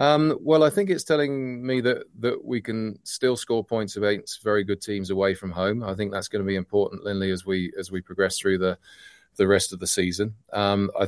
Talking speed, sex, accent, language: 235 wpm, male, British, English